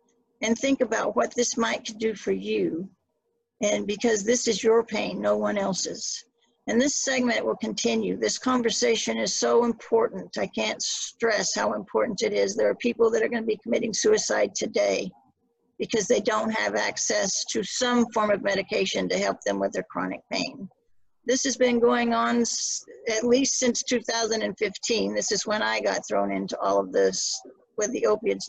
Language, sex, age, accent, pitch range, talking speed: English, female, 50-69, American, 210-250 Hz, 175 wpm